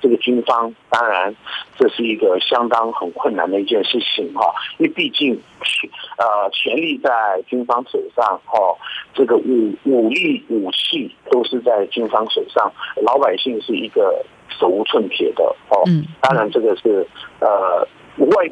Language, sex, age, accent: Chinese, male, 50-69, native